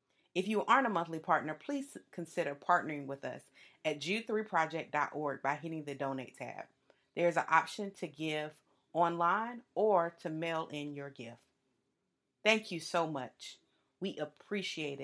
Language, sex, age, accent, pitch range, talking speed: English, female, 30-49, American, 145-180 Hz, 150 wpm